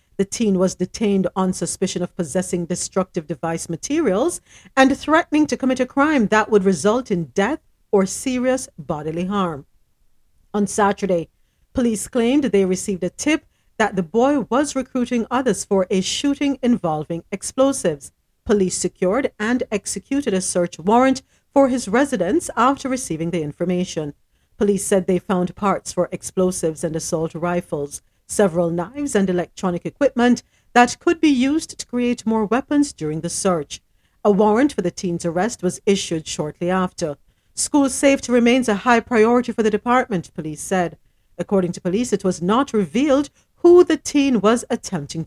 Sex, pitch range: female, 175-250 Hz